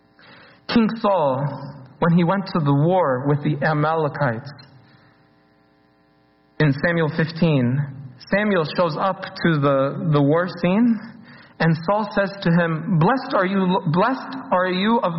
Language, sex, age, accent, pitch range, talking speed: English, male, 40-59, American, 145-210 Hz, 135 wpm